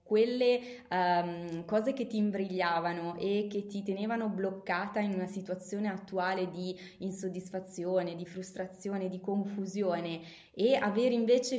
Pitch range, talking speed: 185-220 Hz, 125 wpm